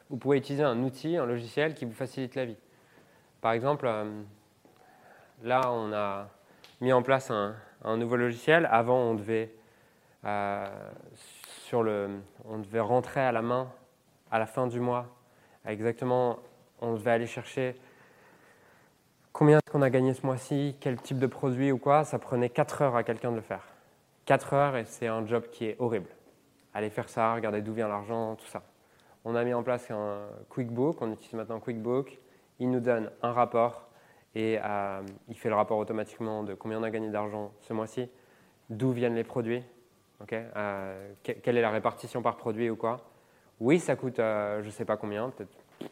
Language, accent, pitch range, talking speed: French, French, 110-130 Hz, 185 wpm